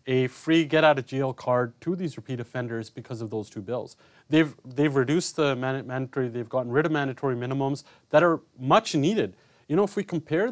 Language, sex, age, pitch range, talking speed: English, male, 30-49, 125-170 Hz, 190 wpm